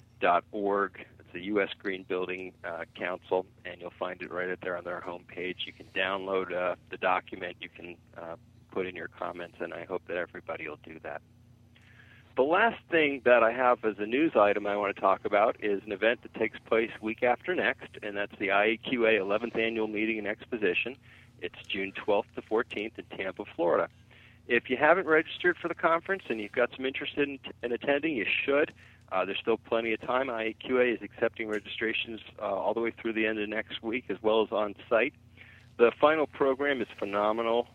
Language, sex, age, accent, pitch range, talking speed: English, male, 40-59, American, 100-115 Hz, 200 wpm